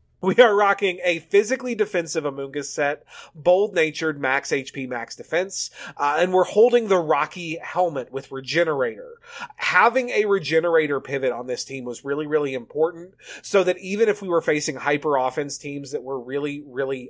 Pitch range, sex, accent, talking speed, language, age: 145-200 Hz, male, American, 160 wpm, English, 30-49